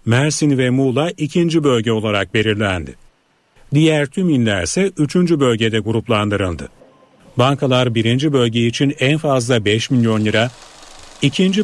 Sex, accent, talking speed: male, native, 125 wpm